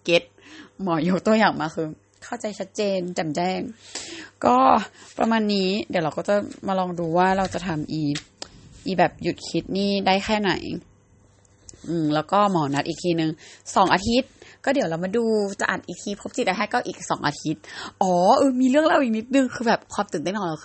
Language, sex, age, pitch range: Thai, female, 20-39, 155-215 Hz